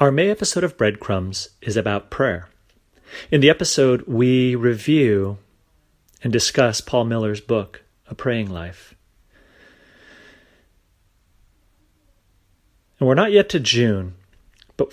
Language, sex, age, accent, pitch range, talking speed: English, male, 30-49, American, 95-120 Hz, 115 wpm